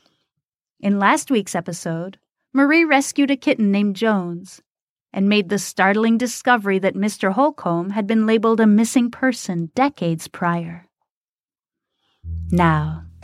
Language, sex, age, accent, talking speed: English, female, 30-49, American, 120 wpm